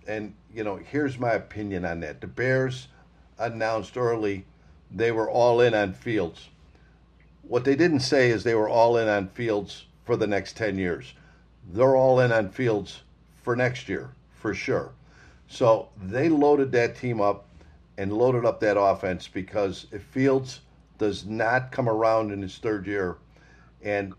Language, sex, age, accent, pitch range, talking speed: English, male, 50-69, American, 100-125 Hz, 165 wpm